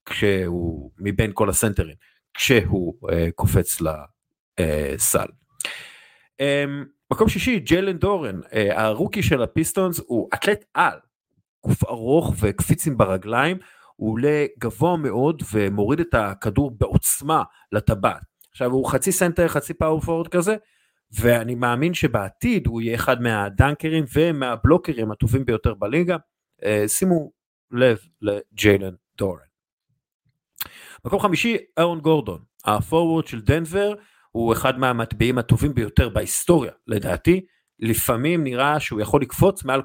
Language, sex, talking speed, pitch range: Hebrew, male, 115 wpm, 105-155 Hz